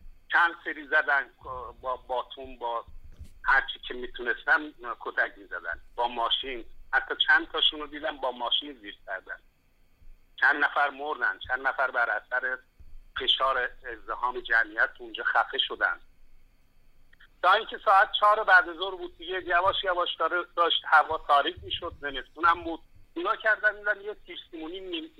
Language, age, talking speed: Persian, 50-69, 140 wpm